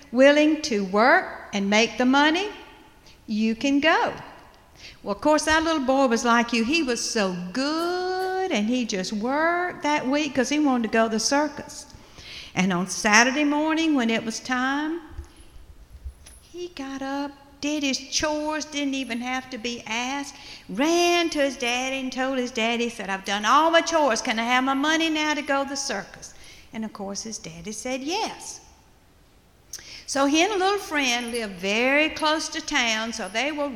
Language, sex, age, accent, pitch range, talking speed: English, female, 60-79, American, 235-315 Hz, 185 wpm